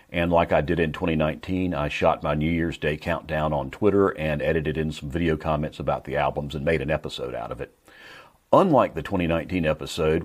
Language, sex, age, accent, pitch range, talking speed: English, male, 40-59, American, 75-95 Hz, 205 wpm